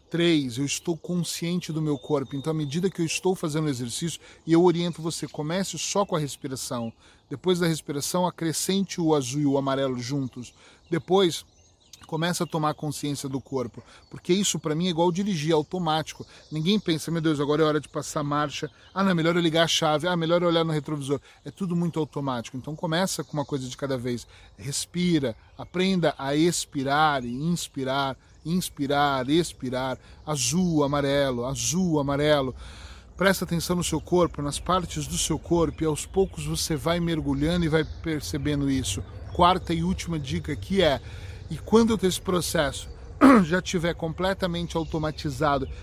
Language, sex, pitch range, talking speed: Portuguese, male, 140-170 Hz, 175 wpm